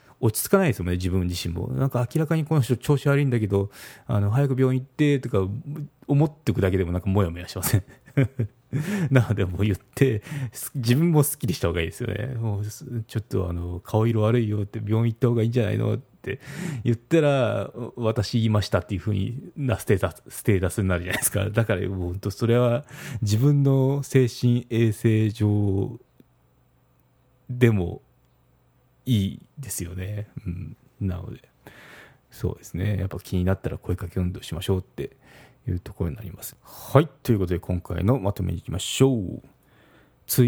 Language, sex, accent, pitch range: Japanese, male, native, 95-125 Hz